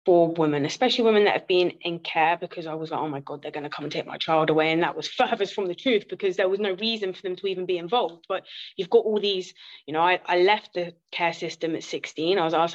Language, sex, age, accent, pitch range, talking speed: English, female, 20-39, British, 165-195 Hz, 285 wpm